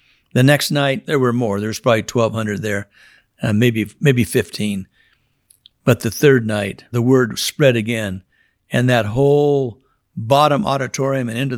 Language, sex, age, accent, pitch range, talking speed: English, male, 60-79, American, 110-135 Hz, 155 wpm